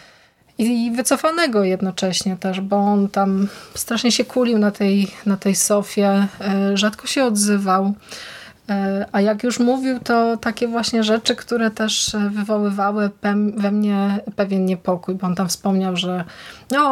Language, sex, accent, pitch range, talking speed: Polish, female, native, 195-220 Hz, 135 wpm